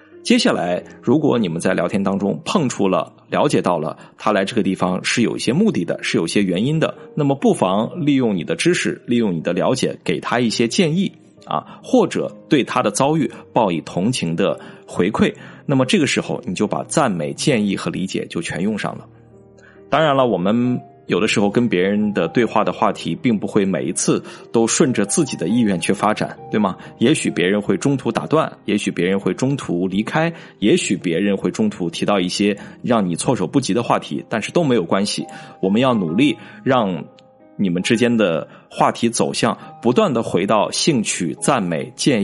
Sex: male